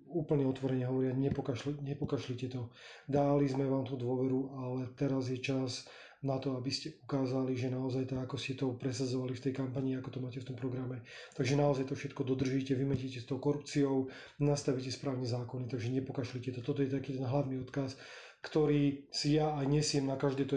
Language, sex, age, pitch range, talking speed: Slovak, male, 30-49, 125-135 Hz, 185 wpm